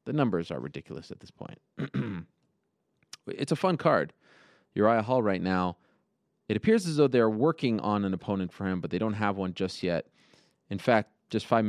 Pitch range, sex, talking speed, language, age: 90-115 Hz, male, 190 wpm, English, 30-49